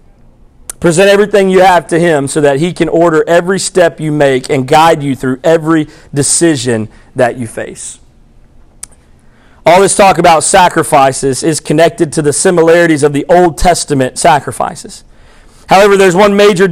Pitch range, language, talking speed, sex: 155-200 Hz, English, 155 wpm, male